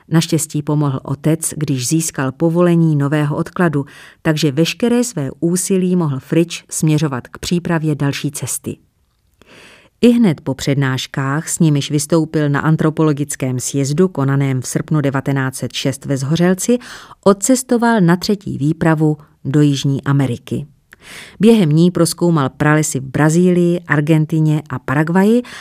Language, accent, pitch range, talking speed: Czech, native, 140-170 Hz, 115 wpm